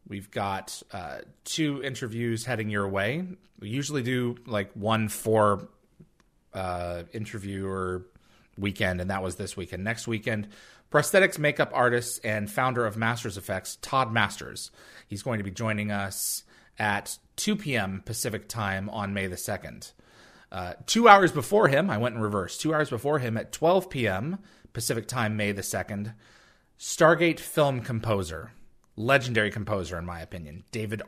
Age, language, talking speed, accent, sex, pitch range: 30-49, English, 155 wpm, American, male, 100-120 Hz